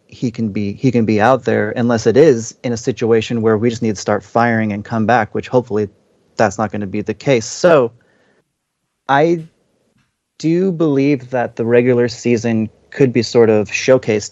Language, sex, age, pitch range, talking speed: English, male, 30-49, 110-135 Hz, 195 wpm